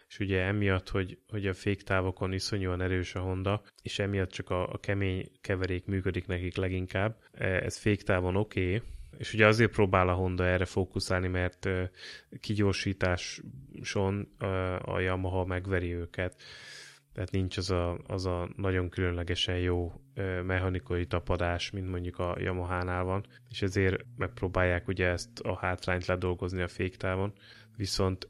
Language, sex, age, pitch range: Hungarian, male, 20-39, 90-100 Hz